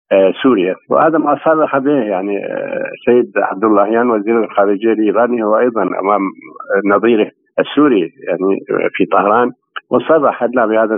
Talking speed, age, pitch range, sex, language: 130 wpm, 50-69, 100-135 Hz, male, Arabic